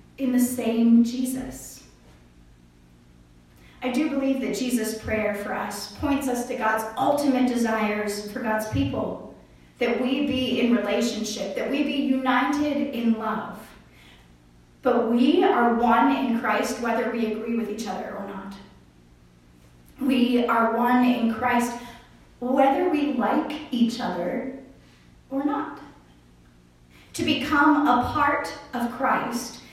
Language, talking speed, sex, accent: English, 130 wpm, female, American